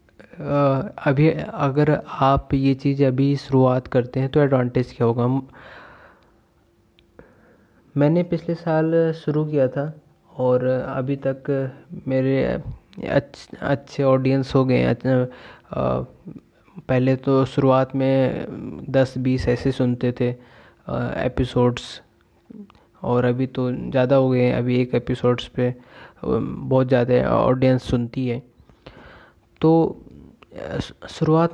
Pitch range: 125-140 Hz